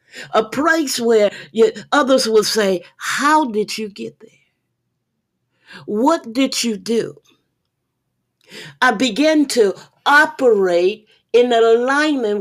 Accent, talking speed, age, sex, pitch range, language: American, 100 wpm, 50-69, female, 205-260 Hz, English